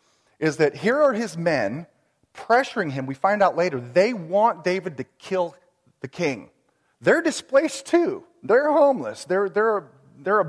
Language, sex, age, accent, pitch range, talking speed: English, male, 40-59, American, 170-265 Hz, 160 wpm